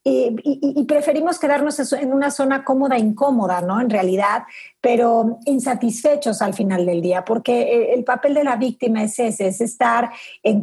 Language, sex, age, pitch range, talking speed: Spanish, female, 40-59, 220-285 Hz, 170 wpm